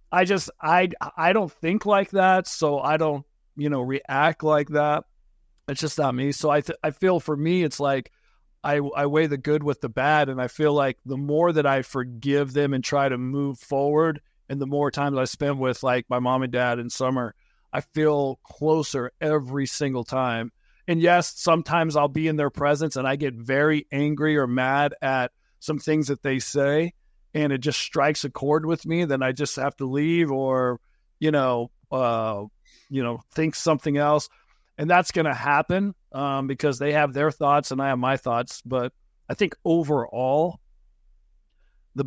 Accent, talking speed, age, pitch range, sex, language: American, 195 wpm, 40-59, 130-155 Hz, male, English